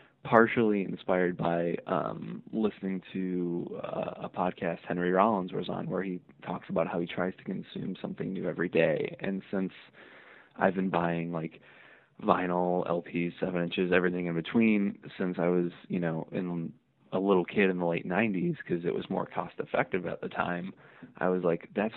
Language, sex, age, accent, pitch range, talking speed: English, male, 20-39, American, 90-100 Hz, 180 wpm